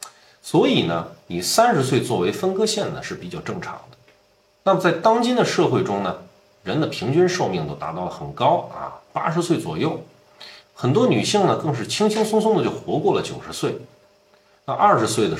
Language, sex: Chinese, male